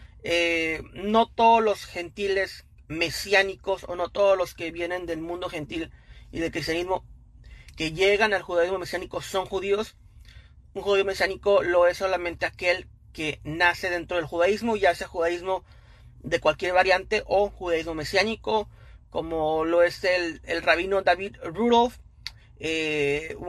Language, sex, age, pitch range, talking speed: Spanish, male, 30-49, 170-210 Hz, 140 wpm